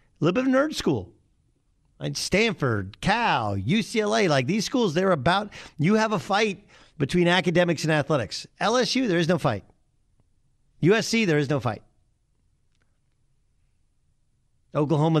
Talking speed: 135 wpm